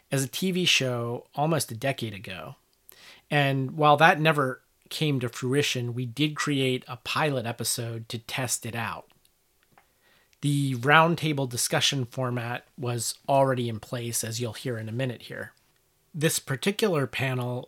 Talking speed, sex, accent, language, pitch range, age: 145 wpm, male, American, English, 120-145 Hz, 30-49